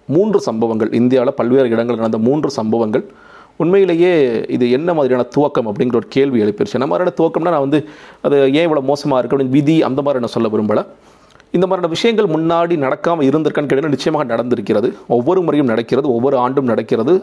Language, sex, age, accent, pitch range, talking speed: Tamil, male, 40-59, native, 115-170 Hz, 165 wpm